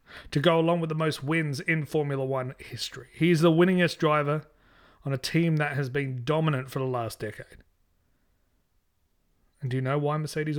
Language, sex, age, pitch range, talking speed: English, male, 30-49, 115-165 Hz, 180 wpm